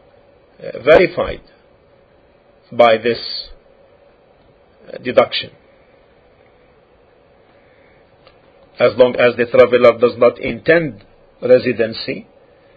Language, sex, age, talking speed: English, male, 50-69, 65 wpm